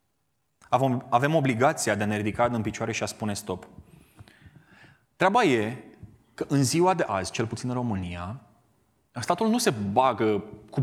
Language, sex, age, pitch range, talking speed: Romanian, male, 20-39, 100-125 Hz, 155 wpm